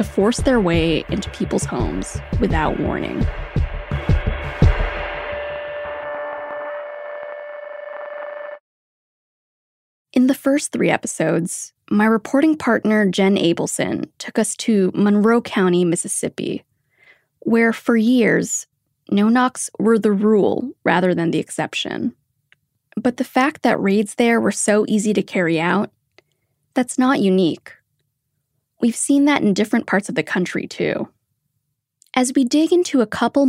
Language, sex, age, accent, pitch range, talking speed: English, female, 20-39, American, 185-265 Hz, 120 wpm